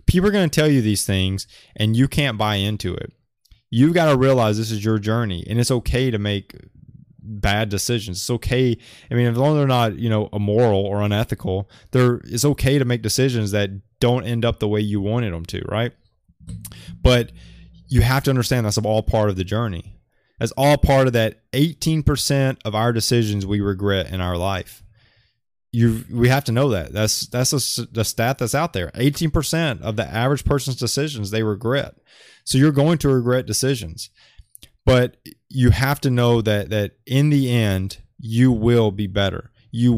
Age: 20-39